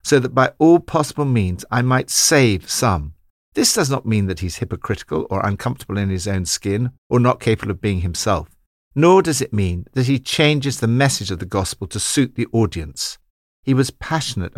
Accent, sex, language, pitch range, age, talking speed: British, male, English, 95-140 Hz, 60-79, 200 wpm